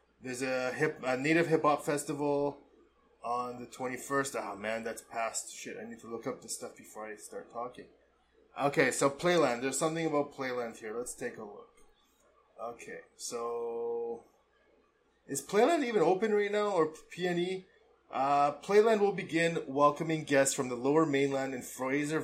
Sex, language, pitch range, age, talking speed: male, English, 125-165 Hz, 20-39, 165 wpm